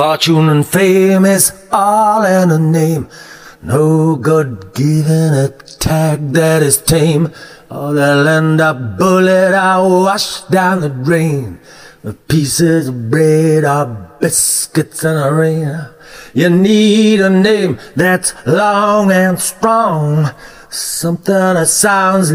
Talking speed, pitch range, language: 120 wpm, 145-185 Hz, English